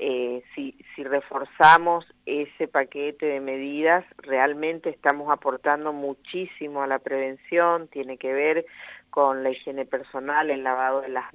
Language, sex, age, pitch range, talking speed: Spanish, female, 40-59, 130-165 Hz, 135 wpm